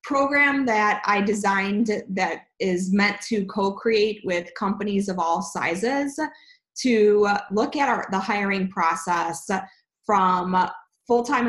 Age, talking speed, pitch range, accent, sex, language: 20-39, 115 wpm, 185-220 Hz, American, female, English